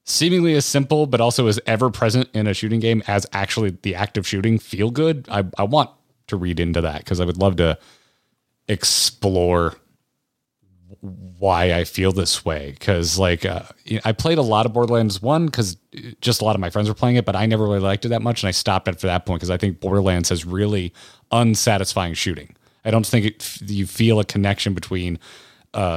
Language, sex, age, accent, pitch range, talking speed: English, male, 30-49, American, 90-115 Hz, 210 wpm